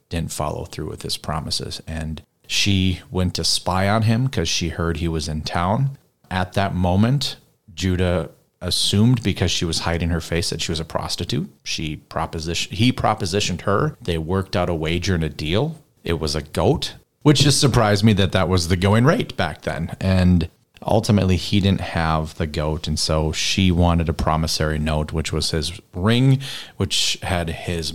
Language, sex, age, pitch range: English, male, 30-49, 80-100 Hz